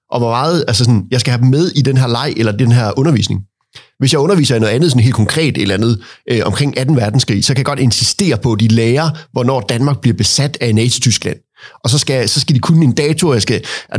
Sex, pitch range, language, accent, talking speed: male, 120-155 Hz, Danish, native, 255 wpm